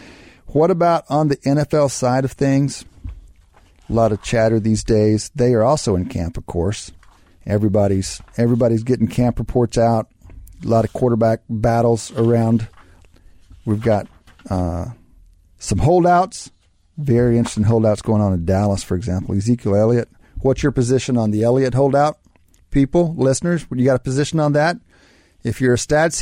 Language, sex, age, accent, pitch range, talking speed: English, male, 40-59, American, 90-120 Hz, 155 wpm